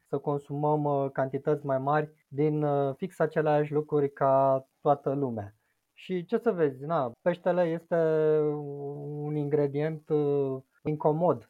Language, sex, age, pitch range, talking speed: Romanian, male, 20-39, 130-155 Hz, 115 wpm